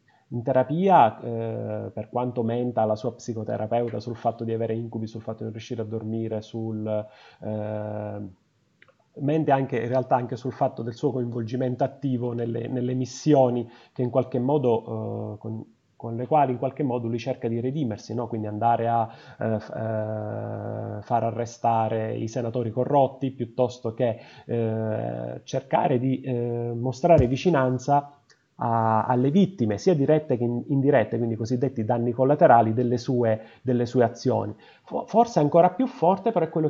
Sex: male